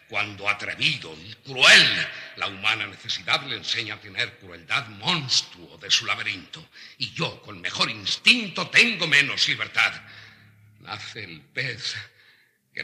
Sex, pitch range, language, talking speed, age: male, 100-140 Hz, Spanish, 130 wpm, 60-79